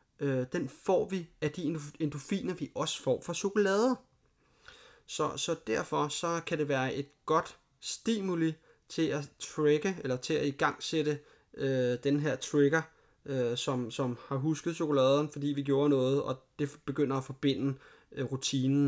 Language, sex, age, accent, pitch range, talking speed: Danish, male, 30-49, native, 130-150 Hz, 160 wpm